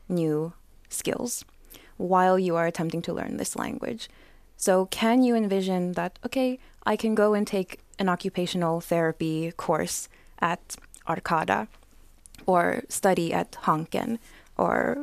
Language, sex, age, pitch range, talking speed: Finnish, female, 20-39, 175-225 Hz, 130 wpm